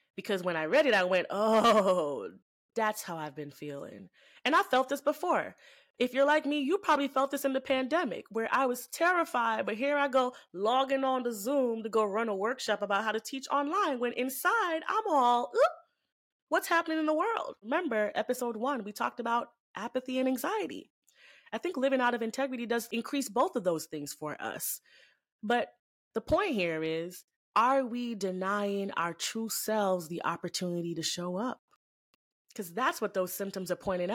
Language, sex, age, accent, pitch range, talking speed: English, female, 20-39, American, 195-270 Hz, 185 wpm